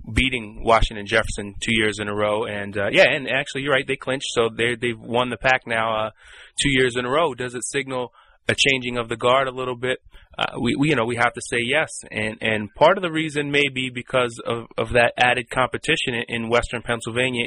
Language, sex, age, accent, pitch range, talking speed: English, male, 20-39, American, 110-125 Hz, 235 wpm